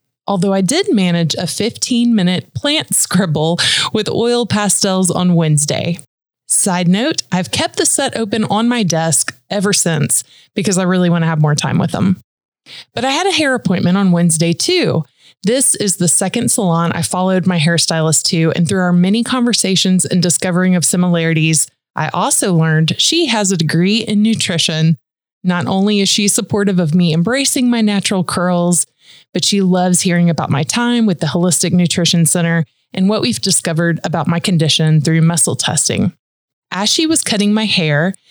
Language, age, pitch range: English, 20-39, 165-210 Hz